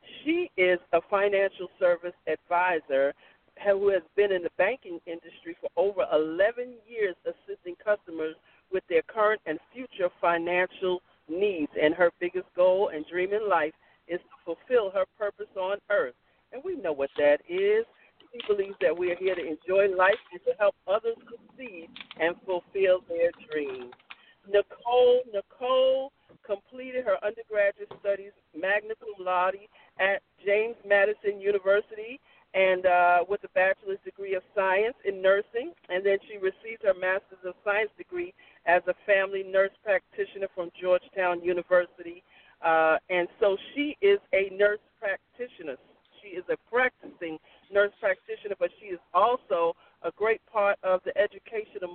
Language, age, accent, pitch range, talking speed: English, 50-69, American, 180-270 Hz, 150 wpm